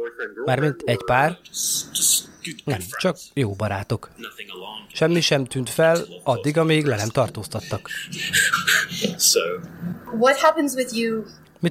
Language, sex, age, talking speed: Hungarian, male, 30-49, 85 wpm